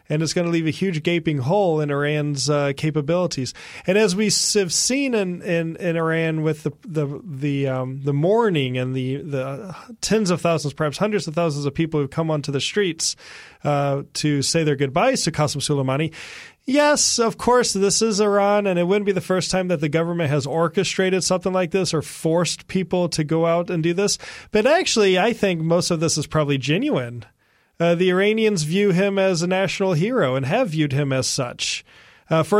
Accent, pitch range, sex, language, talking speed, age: American, 145-185 Hz, male, English, 205 wpm, 30-49